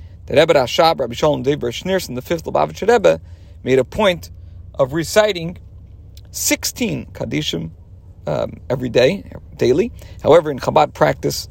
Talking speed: 135 wpm